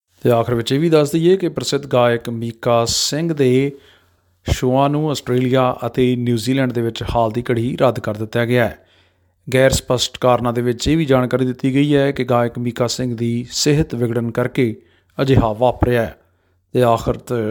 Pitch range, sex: 115-135 Hz, male